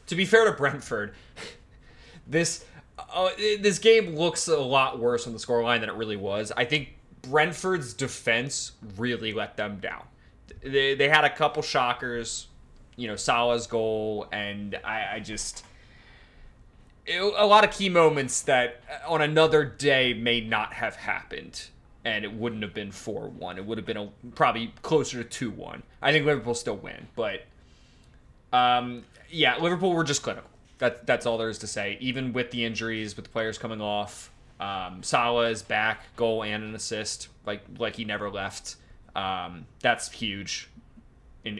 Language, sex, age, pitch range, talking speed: English, male, 20-39, 105-140 Hz, 165 wpm